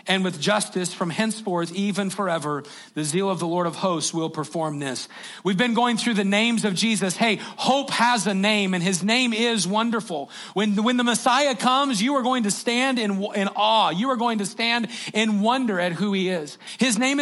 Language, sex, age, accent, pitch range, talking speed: English, male, 40-59, American, 175-230 Hz, 215 wpm